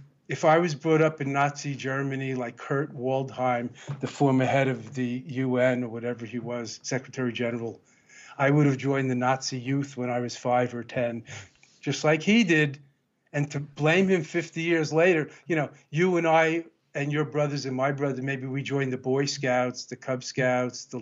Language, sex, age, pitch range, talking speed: English, male, 50-69, 130-155 Hz, 195 wpm